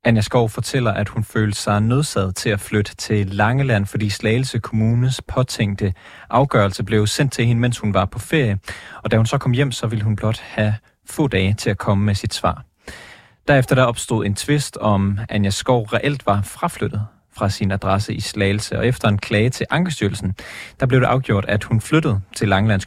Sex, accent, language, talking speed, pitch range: male, native, Danish, 205 wpm, 100-120 Hz